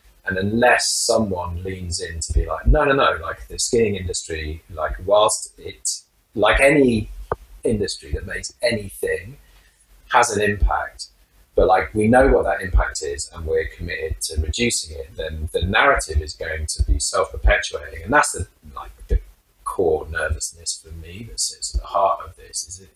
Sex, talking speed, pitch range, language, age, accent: male, 175 wpm, 80-120 Hz, English, 30-49, British